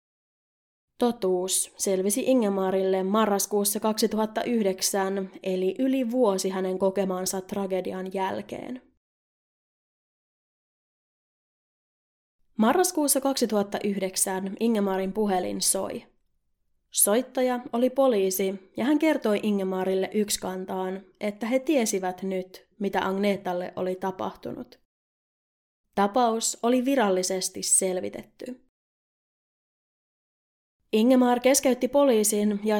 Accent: native